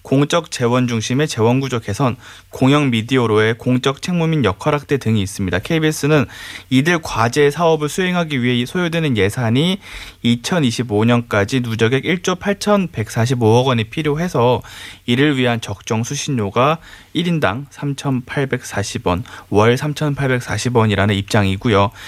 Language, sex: Korean, male